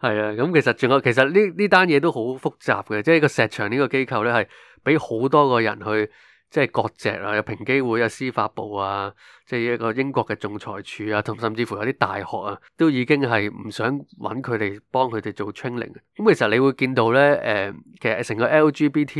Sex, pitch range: male, 105-135 Hz